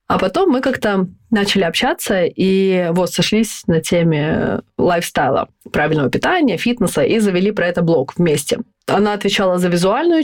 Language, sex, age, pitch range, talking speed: Russian, female, 20-39, 165-220 Hz, 145 wpm